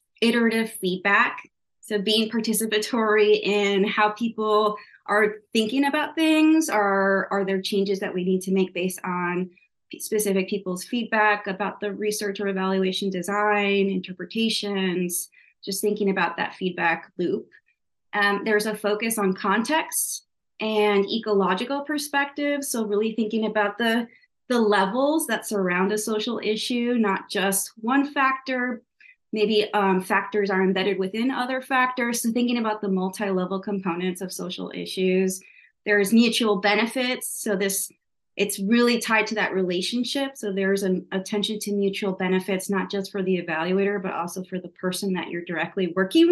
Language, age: English, 30-49